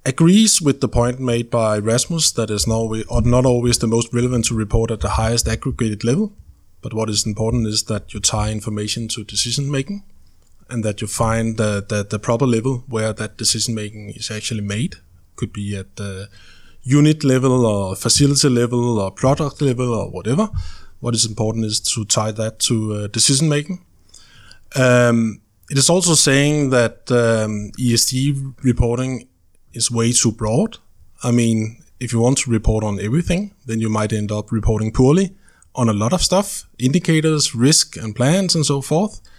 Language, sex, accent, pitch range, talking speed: Danish, male, native, 105-130 Hz, 170 wpm